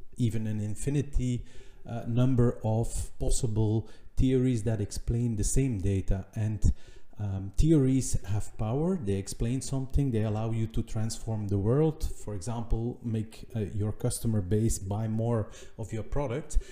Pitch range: 110-130 Hz